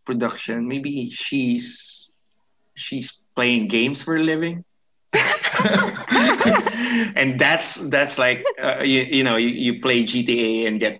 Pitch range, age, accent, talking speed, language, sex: 120-155 Hz, 20-39, Filipino, 125 wpm, English, male